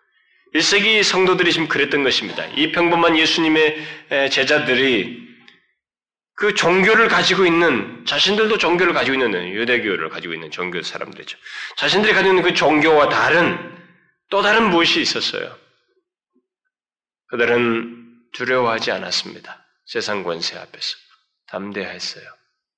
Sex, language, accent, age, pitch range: male, Korean, native, 20-39, 110-175 Hz